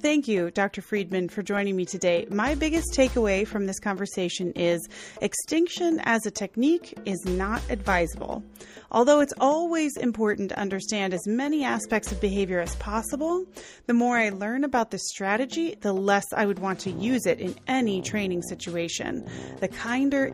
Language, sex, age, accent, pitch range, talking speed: English, female, 30-49, American, 195-265 Hz, 165 wpm